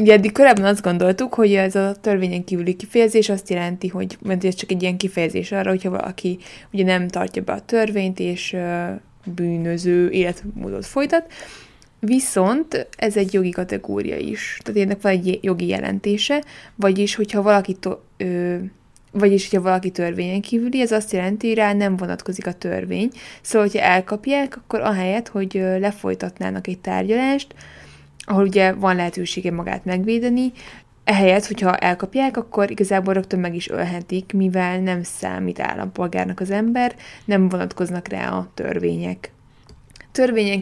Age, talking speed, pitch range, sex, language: 20-39, 140 wpm, 180-210 Hz, female, Hungarian